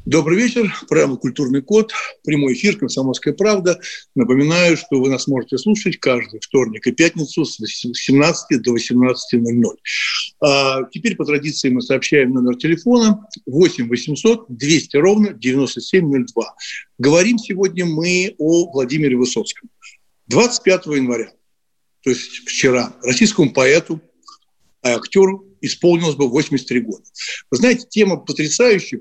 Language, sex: Russian, male